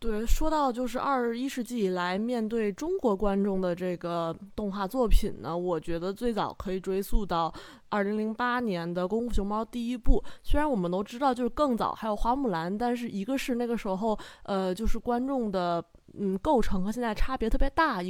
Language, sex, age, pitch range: Chinese, female, 20-39, 185-235 Hz